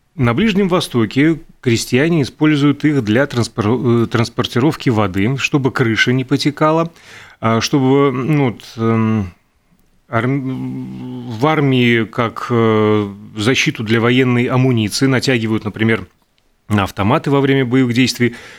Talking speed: 95 wpm